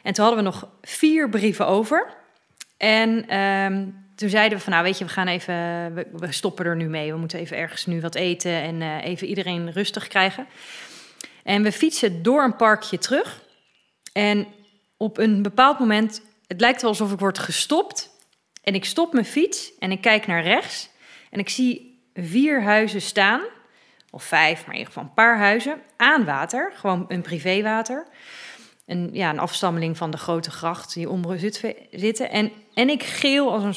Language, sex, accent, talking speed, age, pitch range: Dutch, female, Dutch, 185 wpm, 30-49, 175-235 Hz